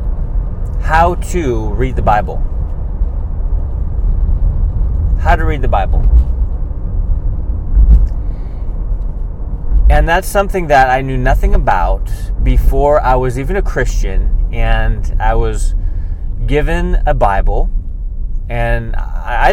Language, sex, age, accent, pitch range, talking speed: English, male, 30-49, American, 80-120 Hz, 100 wpm